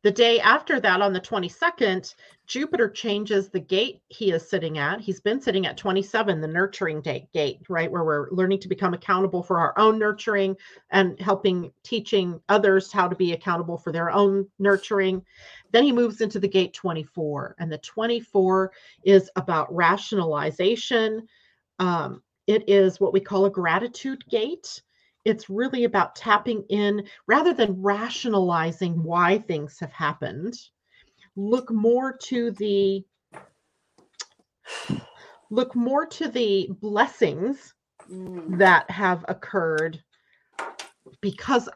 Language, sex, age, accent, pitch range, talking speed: English, female, 40-59, American, 175-220 Hz, 135 wpm